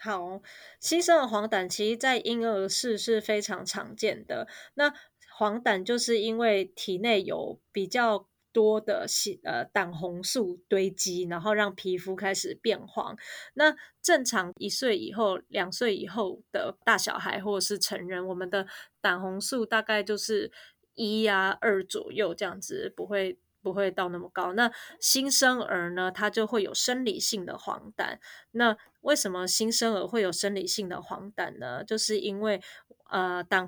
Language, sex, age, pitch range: Chinese, female, 20-39, 190-225 Hz